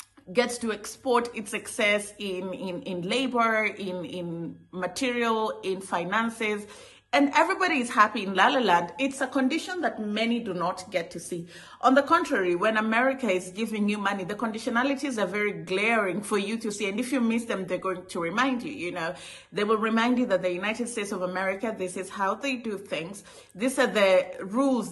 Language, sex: English, female